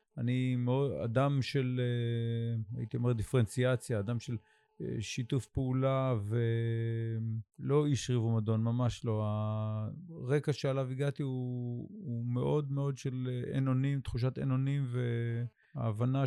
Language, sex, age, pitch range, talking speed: Hebrew, male, 50-69, 115-130 Hz, 115 wpm